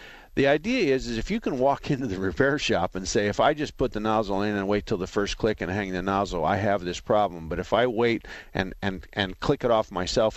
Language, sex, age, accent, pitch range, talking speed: English, male, 50-69, American, 100-135 Hz, 265 wpm